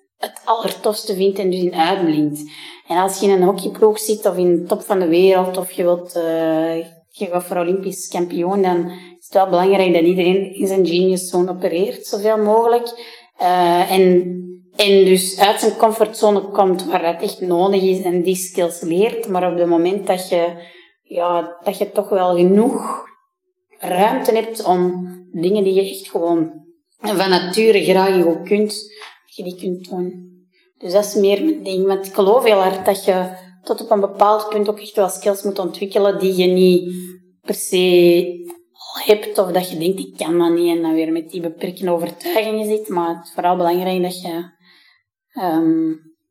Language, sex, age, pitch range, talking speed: Dutch, female, 30-49, 175-205 Hz, 185 wpm